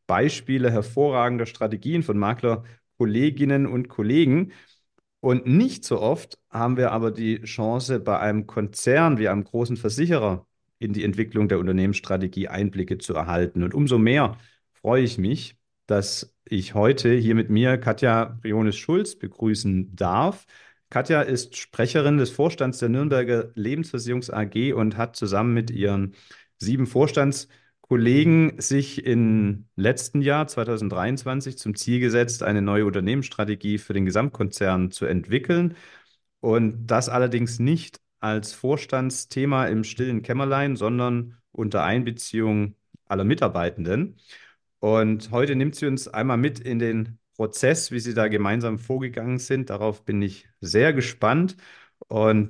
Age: 40-59